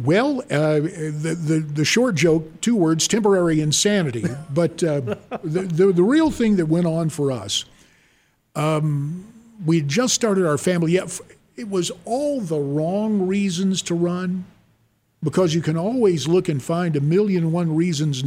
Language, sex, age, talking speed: English, male, 50-69, 160 wpm